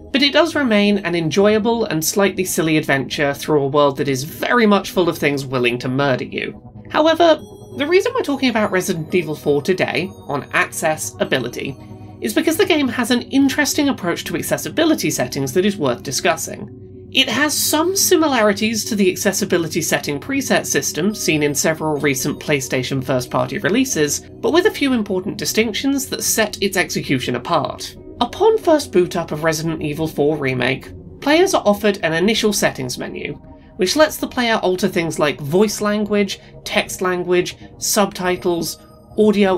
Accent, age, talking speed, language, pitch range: British, 30-49, 165 wpm, English, 150-245 Hz